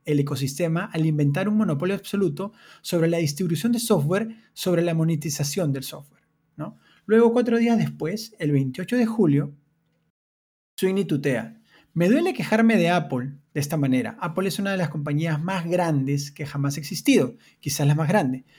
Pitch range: 150-195 Hz